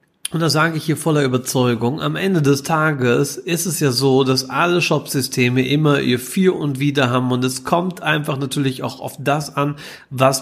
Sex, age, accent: male, 30-49, German